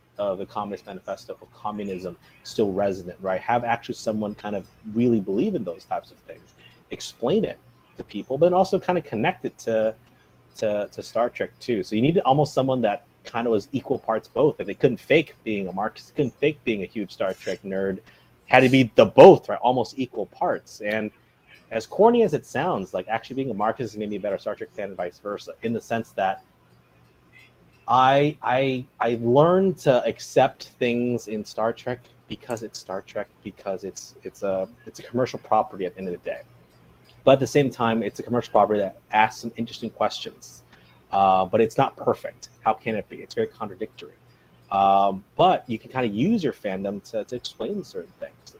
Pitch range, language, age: 100-130 Hz, English, 30-49